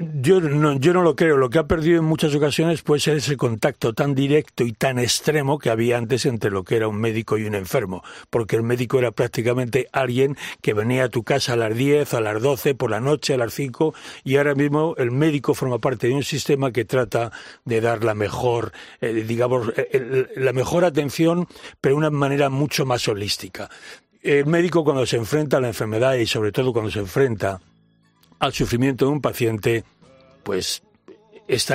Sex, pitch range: male, 115-145 Hz